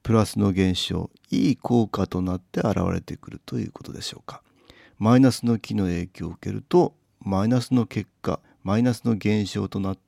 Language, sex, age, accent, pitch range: Japanese, male, 40-59, native, 95-125 Hz